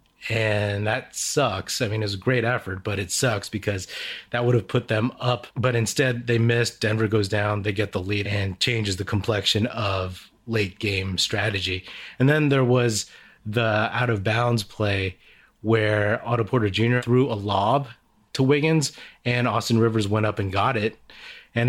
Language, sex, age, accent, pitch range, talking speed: English, male, 30-49, American, 105-125 Hz, 185 wpm